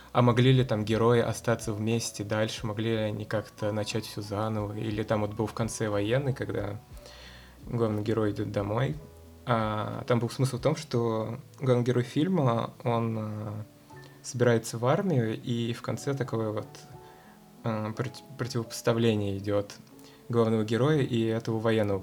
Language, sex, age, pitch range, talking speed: Russian, male, 20-39, 105-125 Hz, 145 wpm